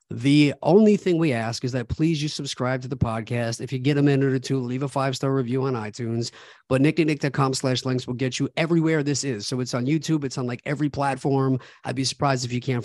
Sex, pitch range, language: male, 125-145 Hz, English